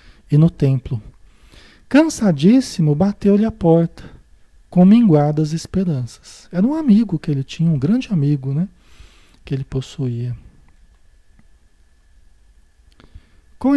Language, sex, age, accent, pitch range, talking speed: Portuguese, male, 40-59, Brazilian, 140-215 Hz, 105 wpm